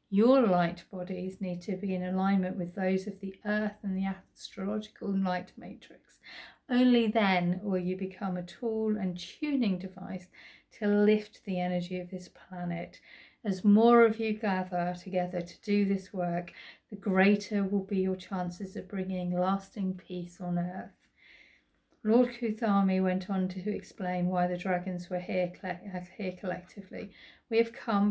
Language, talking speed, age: English, 160 wpm, 40-59